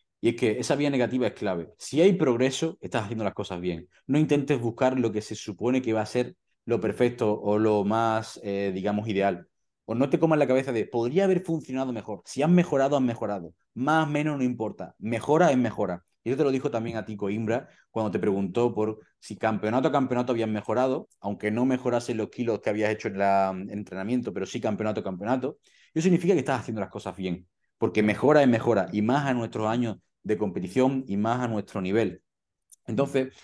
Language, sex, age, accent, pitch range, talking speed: Spanish, male, 30-49, Spanish, 100-125 Hz, 215 wpm